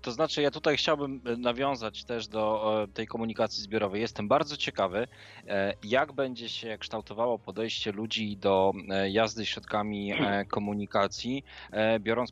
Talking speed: 120 wpm